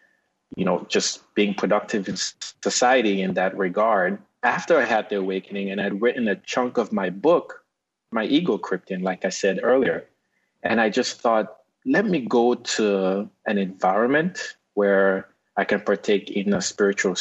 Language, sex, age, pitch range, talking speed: English, male, 30-49, 95-110 Hz, 165 wpm